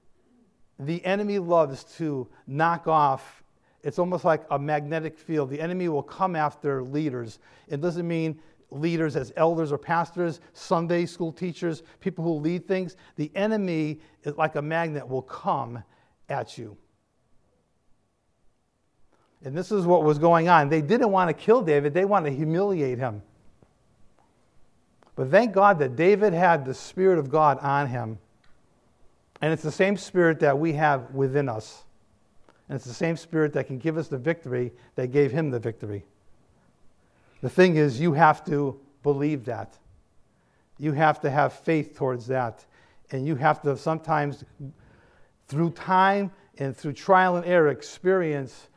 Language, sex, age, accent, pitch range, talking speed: German, male, 50-69, American, 135-170 Hz, 155 wpm